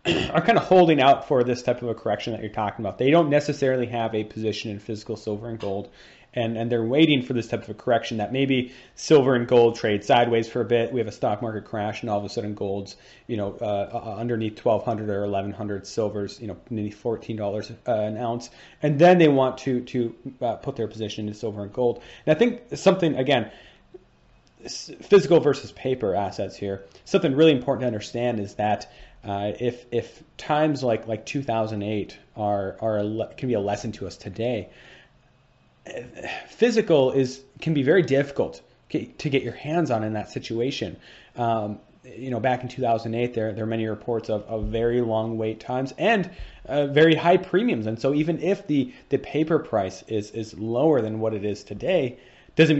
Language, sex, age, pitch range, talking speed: English, male, 30-49, 105-130 Hz, 200 wpm